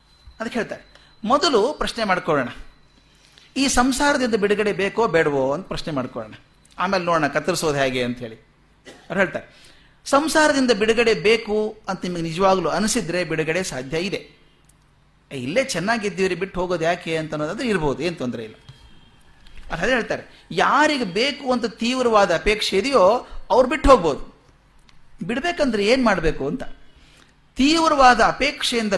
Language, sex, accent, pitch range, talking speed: Kannada, male, native, 155-230 Hz, 120 wpm